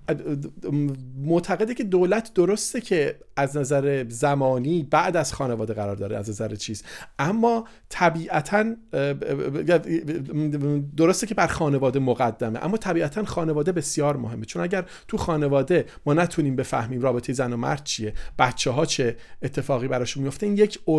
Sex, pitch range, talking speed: male, 135-170 Hz, 135 wpm